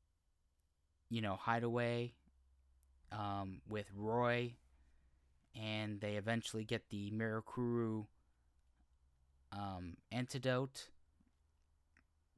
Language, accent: English, American